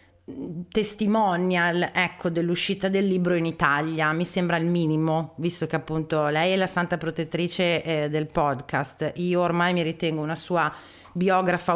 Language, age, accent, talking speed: Italian, 30-49, native, 150 wpm